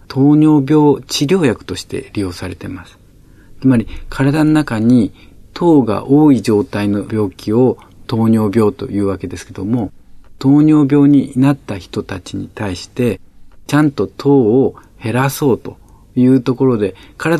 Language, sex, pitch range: Japanese, male, 95-135 Hz